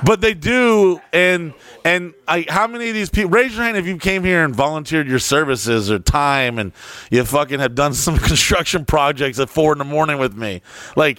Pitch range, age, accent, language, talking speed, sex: 110-160 Hz, 30-49, American, English, 215 wpm, male